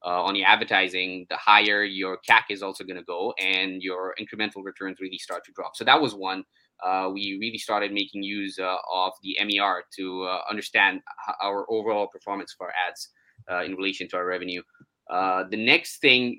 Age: 20-39